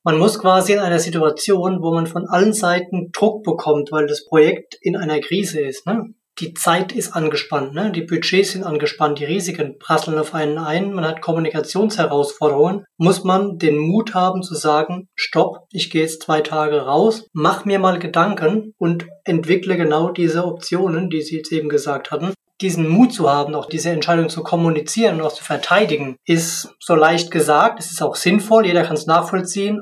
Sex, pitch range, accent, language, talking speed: male, 155-185 Hz, German, German, 185 wpm